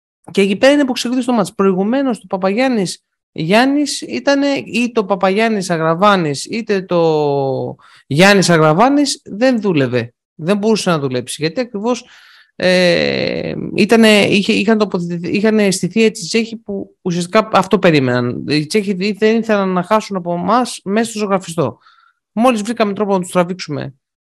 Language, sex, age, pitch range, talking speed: Greek, male, 20-39, 170-220 Hz, 140 wpm